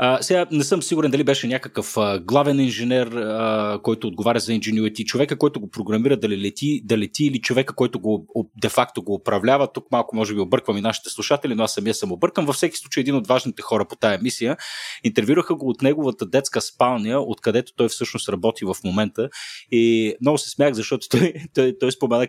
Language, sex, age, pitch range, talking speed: Bulgarian, male, 30-49, 110-140 Hz, 215 wpm